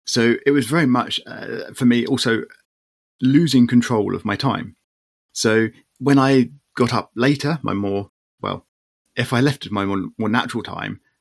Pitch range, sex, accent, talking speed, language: 100-125 Hz, male, British, 165 wpm, English